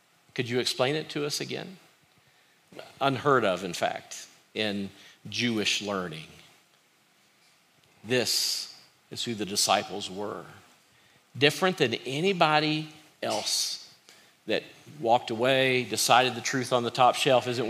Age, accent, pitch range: 40-59, American, 110-135 Hz